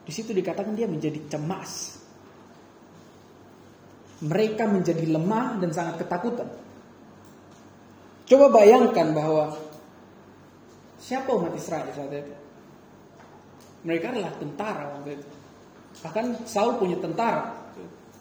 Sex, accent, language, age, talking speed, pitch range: male, native, Indonesian, 20-39, 90 wpm, 160-230 Hz